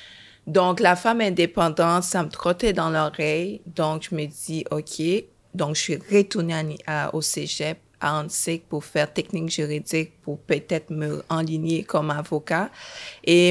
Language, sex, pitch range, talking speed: French, female, 155-180 Hz, 155 wpm